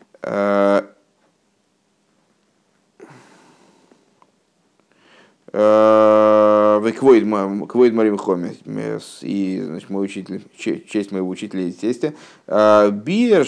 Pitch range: 105-145 Hz